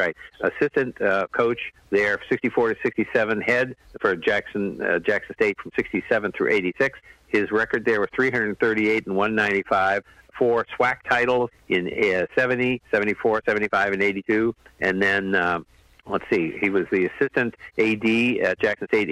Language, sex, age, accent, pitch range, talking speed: English, male, 50-69, American, 95-120 Hz, 150 wpm